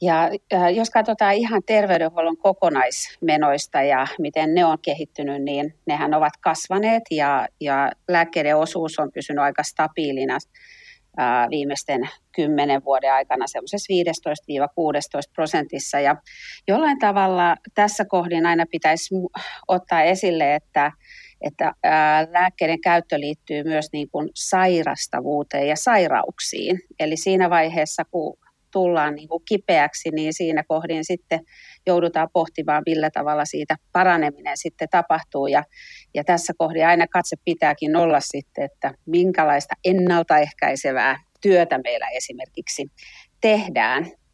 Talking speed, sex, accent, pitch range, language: 115 wpm, female, native, 150-185 Hz, Finnish